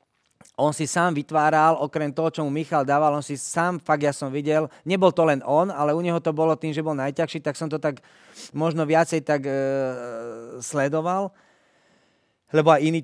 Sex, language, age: male, Slovak, 40-59